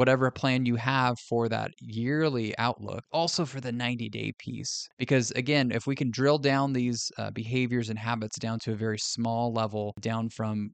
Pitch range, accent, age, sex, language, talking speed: 115-135 Hz, American, 20-39, male, English, 185 wpm